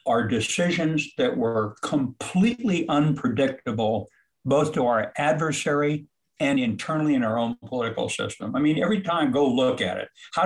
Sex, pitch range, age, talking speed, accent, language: male, 110-155 Hz, 60-79, 150 wpm, American, English